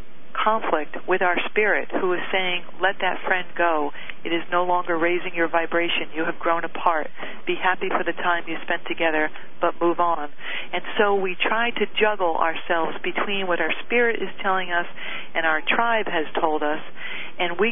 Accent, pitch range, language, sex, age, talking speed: American, 170-205 Hz, English, female, 50-69, 185 wpm